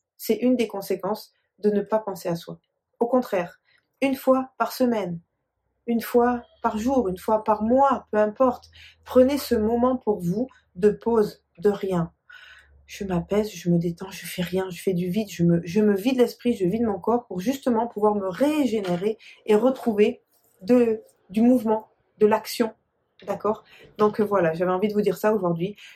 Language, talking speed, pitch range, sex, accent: French, 185 wpm, 180-225 Hz, female, French